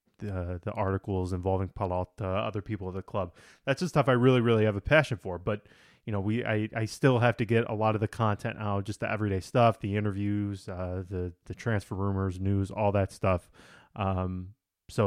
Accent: American